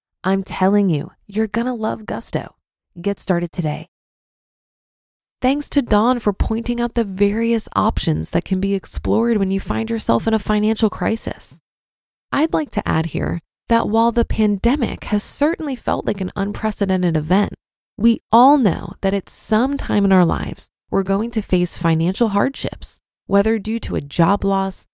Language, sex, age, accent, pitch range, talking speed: English, female, 20-39, American, 185-235 Hz, 165 wpm